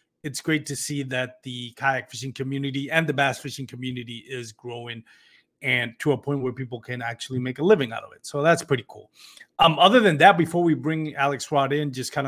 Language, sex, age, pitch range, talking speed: English, male, 30-49, 130-165 Hz, 225 wpm